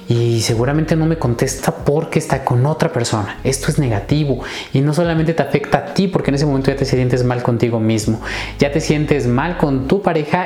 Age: 30-49